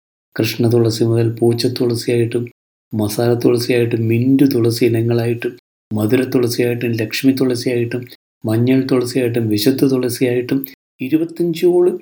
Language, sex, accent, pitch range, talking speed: Malayalam, male, native, 115-135 Hz, 110 wpm